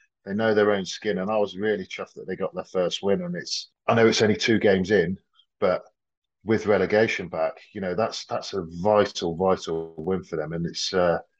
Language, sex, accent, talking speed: English, male, British, 220 wpm